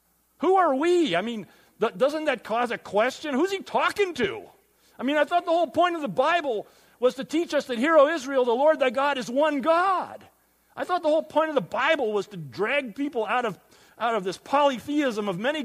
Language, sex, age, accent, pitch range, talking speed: English, male, 40-59, American, 175-280 Hz, 230 wpm